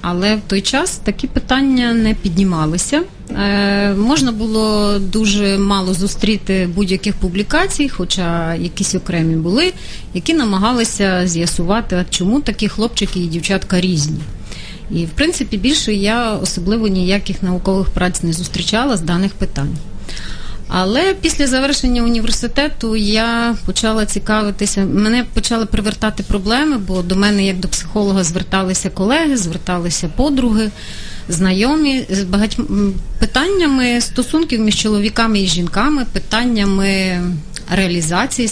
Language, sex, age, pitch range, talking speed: Ukrainian, female, 30-49, 180-235 Hz, 115 wpm